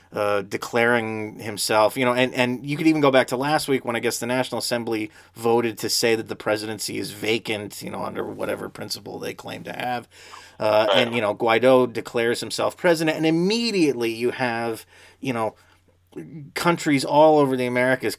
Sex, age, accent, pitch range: male, 30-49, American, 110-140 Hz